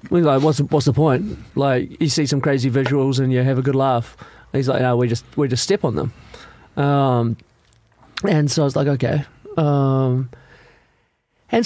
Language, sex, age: English, male, 30-49